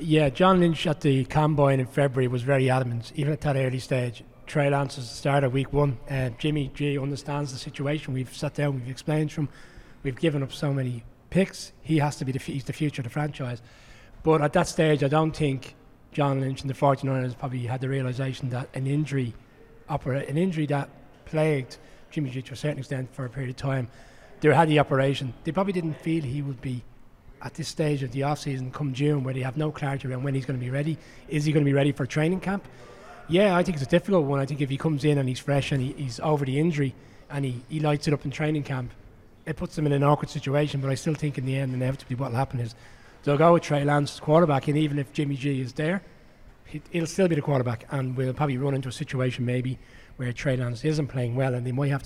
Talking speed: 250 wpm